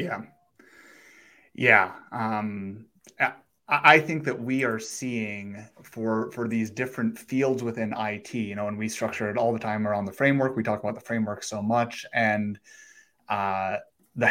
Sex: male